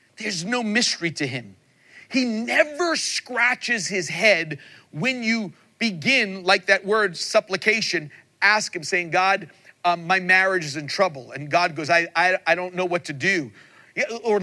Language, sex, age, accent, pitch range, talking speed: English, male, 40-59, American, 150-210 Hz, 160 wpm